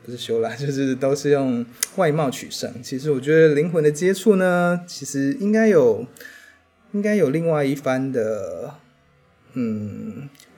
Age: 20-39